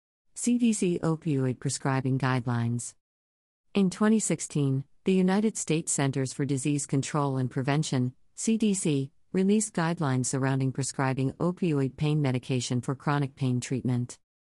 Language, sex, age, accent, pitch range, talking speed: English, female, 50-69, American, 125-155 Hz, 110 wpm